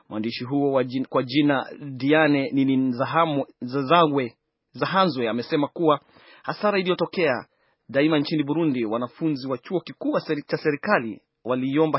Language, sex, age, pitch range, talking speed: Swahili, male, 30-49, 130-160 Hz, 120 wpm